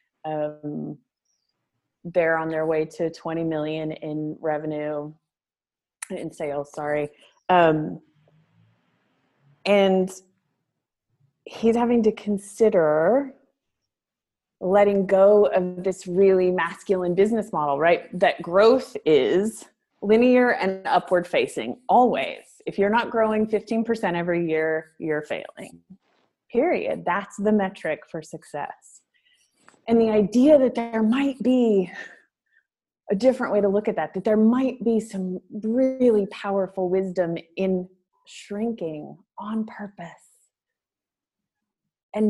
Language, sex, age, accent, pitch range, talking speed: English, female, 20-39, American, 160-220 Hz, 110 wpm